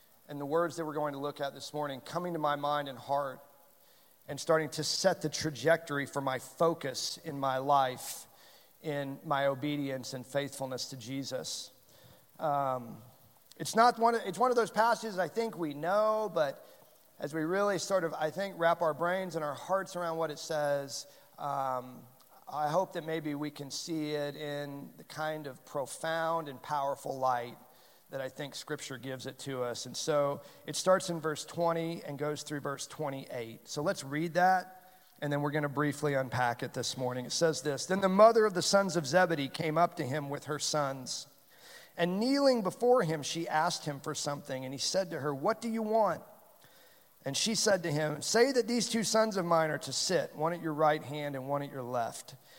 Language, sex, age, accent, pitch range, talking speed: English, male, 40-59, American, 140-170 Hz, 205 wpm